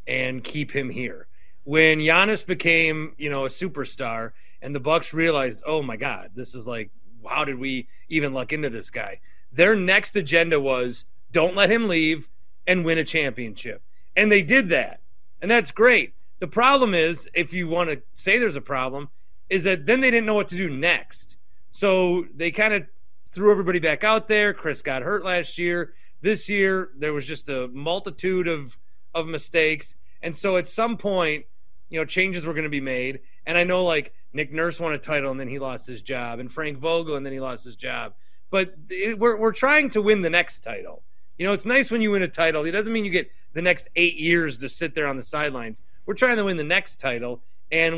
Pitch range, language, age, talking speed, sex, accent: 140-190 Hz, English, 30-49, 215 wpm, male, American